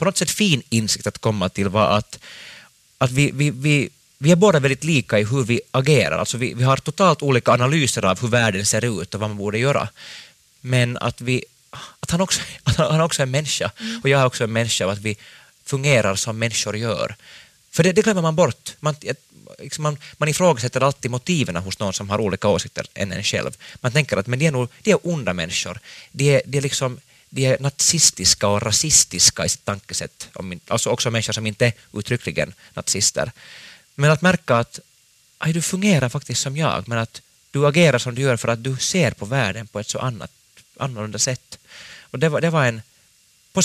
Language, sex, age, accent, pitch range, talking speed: Swedish, male, 30-49, Finnish, 110-145 Hz, 210 wpm